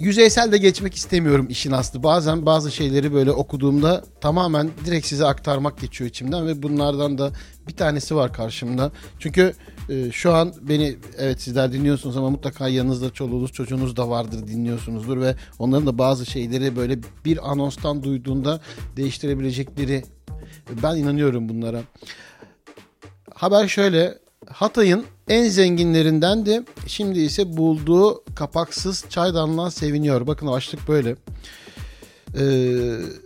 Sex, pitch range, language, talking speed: male, 135-175 Hz, Turkish, 125 wpm